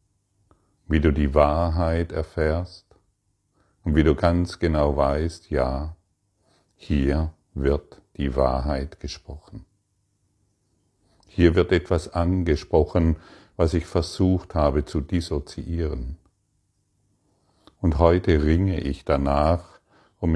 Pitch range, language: 80-100 Hz, German